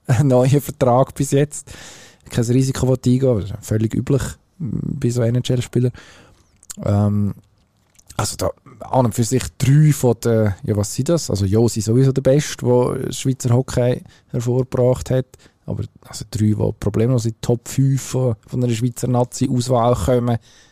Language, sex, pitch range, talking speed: German, male, 110-130 Hz, 170 wpm